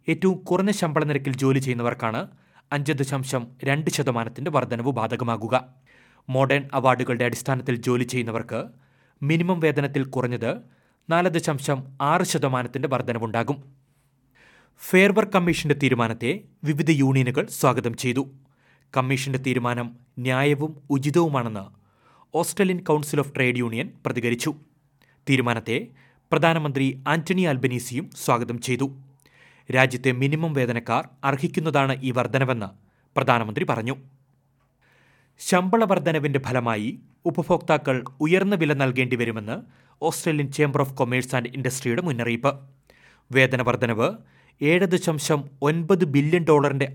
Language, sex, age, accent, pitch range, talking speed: Malayalam, male, 30-49, native, 125-150 Hz, 95 wpm